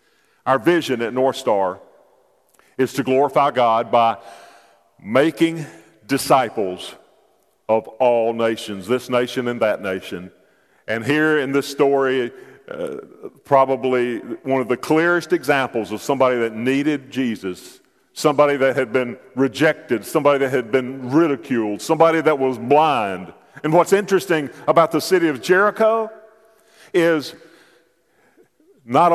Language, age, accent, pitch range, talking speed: English, 50-69, American, 125-180 Hz, 125 wpm